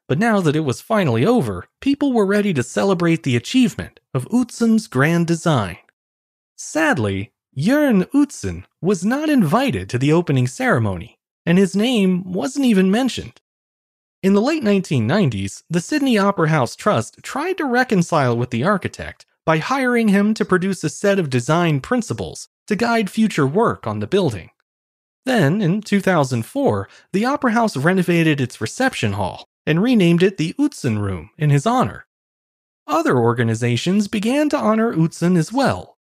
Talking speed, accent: 155 wpm, American